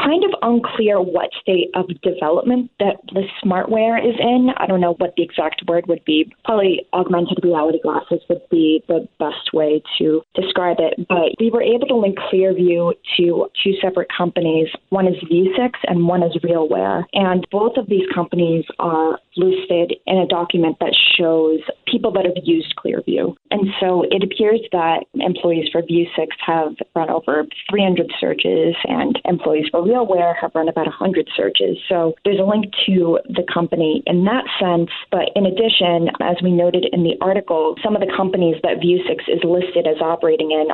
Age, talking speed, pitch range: 20-39, 175 wpm, 165-195 Hz